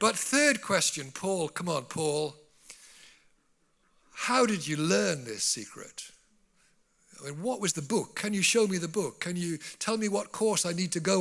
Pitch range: 140-200 Hz